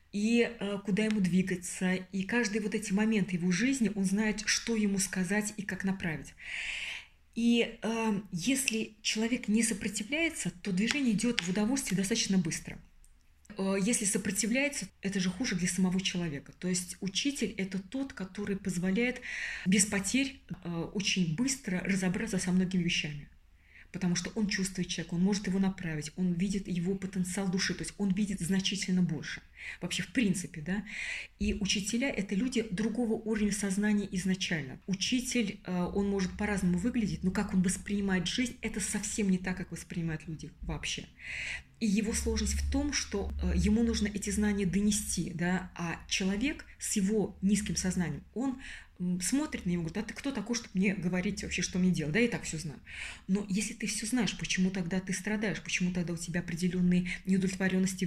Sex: female